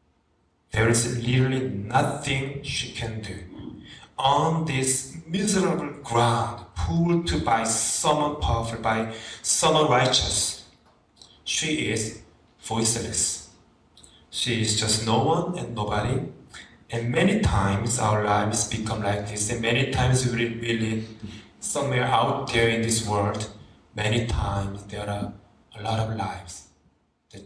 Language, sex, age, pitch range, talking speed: English, male, 30-49, 105-140 Hz, 120 wpm